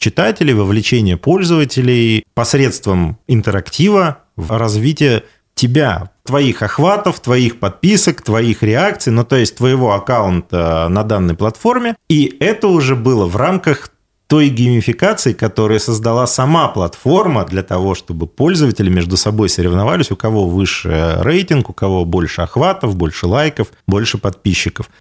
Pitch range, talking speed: 95-130 Hz, 125 wpm